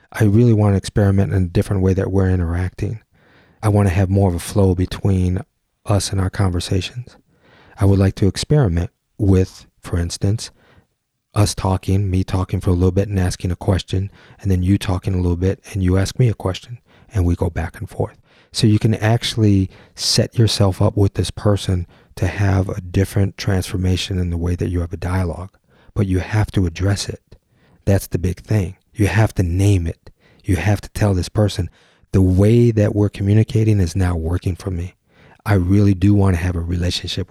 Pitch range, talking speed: 90-105 Hz, 205 wpm